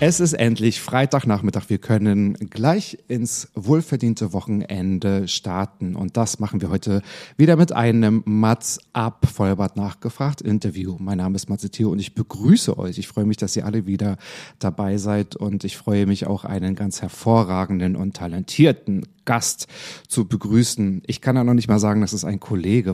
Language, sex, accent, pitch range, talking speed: German, male, German, 100-125 Hz, 170 wpm